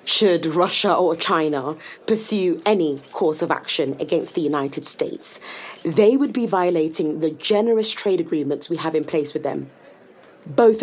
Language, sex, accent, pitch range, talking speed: English, female, British, 165-235 Hz, 155 wpm